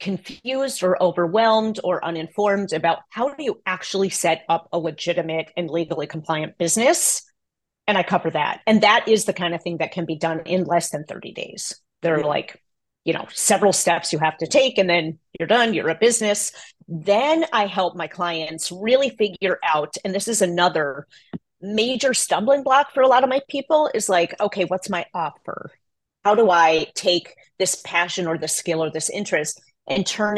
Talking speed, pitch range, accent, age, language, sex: 190 wpm, 170-220 Hz, American, 40-59, English, female